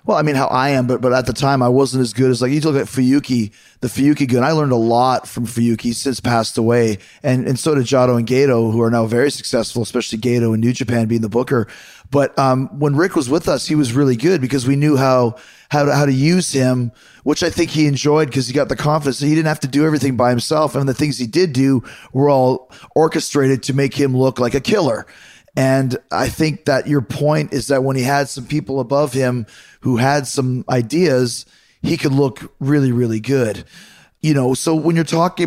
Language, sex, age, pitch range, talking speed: English, male, 20-39, 120-145 Hz, 235 wpm